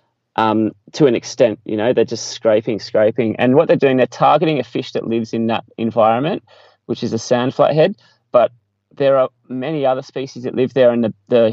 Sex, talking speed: male, 210 wpm